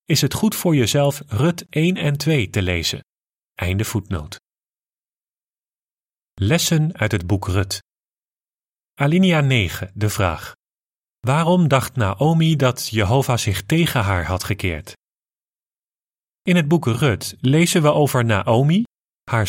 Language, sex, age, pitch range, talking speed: Dutch, male, 30-49, 100-145 Hz, 125 wpm